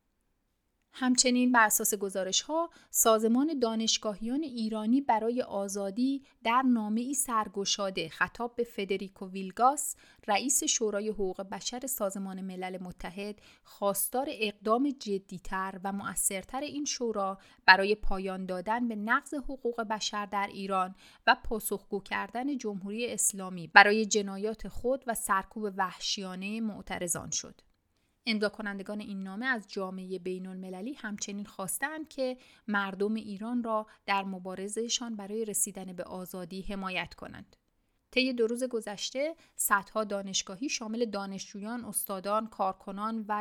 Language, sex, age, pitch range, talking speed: Persian, female, 30-49, 195-235 Hz, 115 wpm